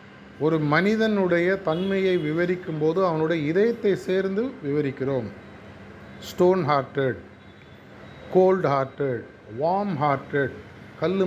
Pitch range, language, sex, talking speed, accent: 130-185 Hz, Tamil, male, 70 wpm, native